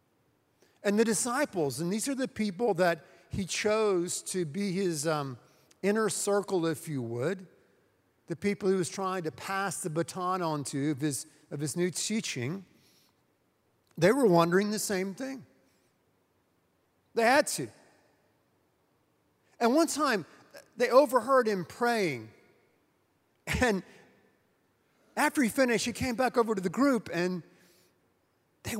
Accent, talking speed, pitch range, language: American, 135 wpm, 160-215 Hz, English